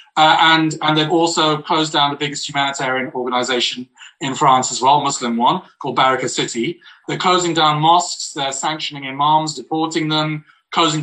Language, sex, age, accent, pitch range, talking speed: English, male, 30-49, British, 140-170 Hz, 165 wpm